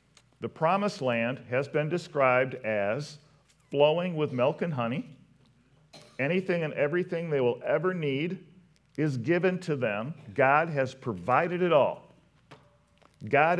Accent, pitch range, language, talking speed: American, 130-155 Hz, English, 130 wpm